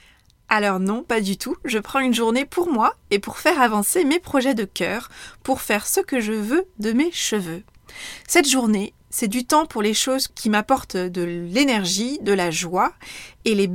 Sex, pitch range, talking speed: female, 195-260 Hz, 195 wpm